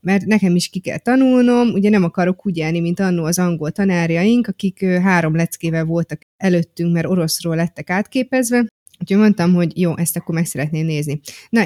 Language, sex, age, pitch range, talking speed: Hungarian, female, 20-39, 165-210 Hz, 180 wpm